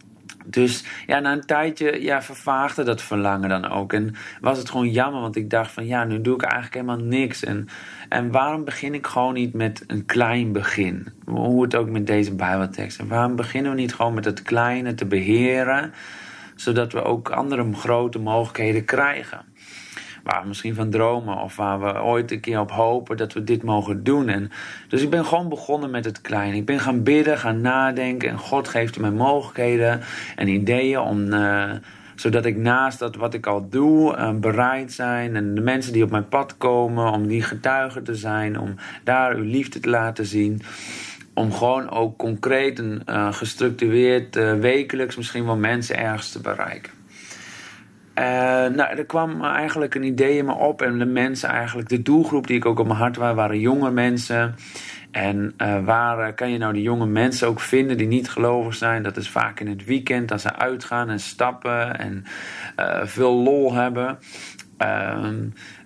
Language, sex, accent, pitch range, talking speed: Dutch, male, Dutch, 110-130 Hz, 190 wpm